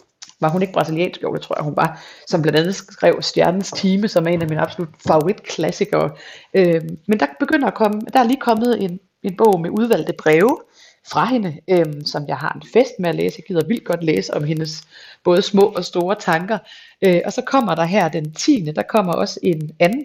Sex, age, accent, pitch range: female, 30-49, native, 165-220 Hz